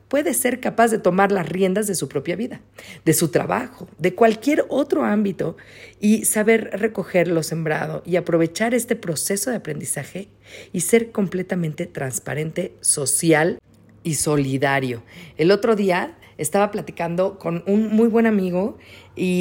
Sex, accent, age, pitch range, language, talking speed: female, Mexican, 40-59, 160-210 Hz, Spanish, 145 wpm